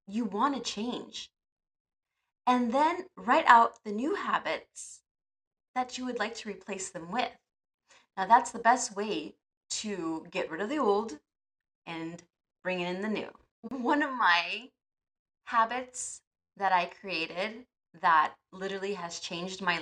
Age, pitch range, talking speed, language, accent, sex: 20-39, 185-255 Hz, 140 wpm, English, American, female